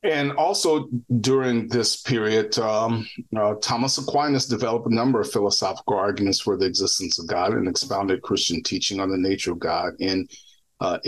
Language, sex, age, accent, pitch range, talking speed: English, male, 40-59, American, 100-130 Hz, 170 wpm